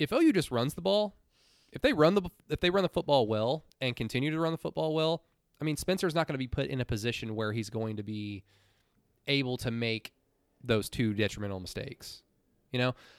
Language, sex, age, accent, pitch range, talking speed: English, male, 20-39, American, 110-145 Hz, 220 wpm